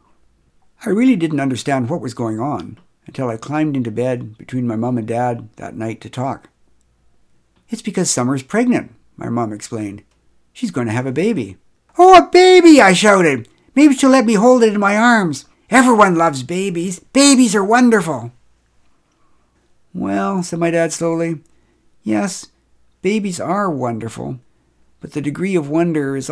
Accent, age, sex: American, 60-79, male